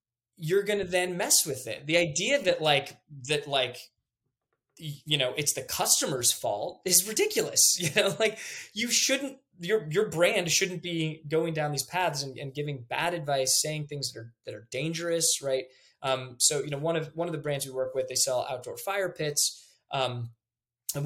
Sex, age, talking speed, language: male, 20-39, 195 wpm, English